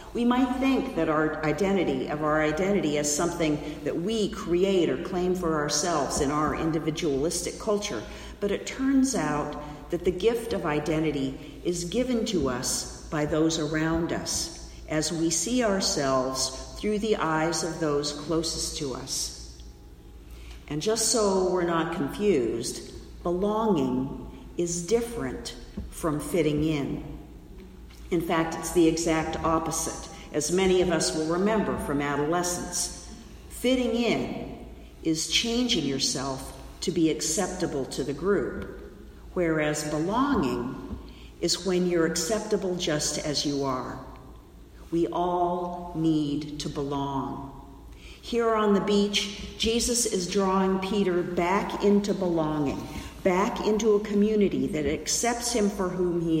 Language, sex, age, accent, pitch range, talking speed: English, female, 50-69, American, 150-195 Hz, 130 wpm